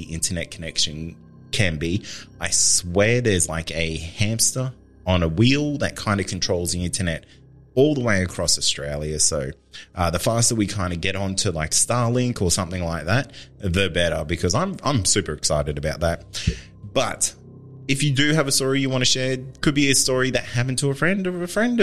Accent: Australian